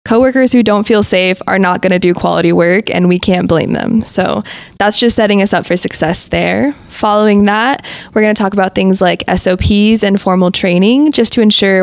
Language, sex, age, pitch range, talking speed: English, female, 20-39, 185-220 Hz, 215 wpm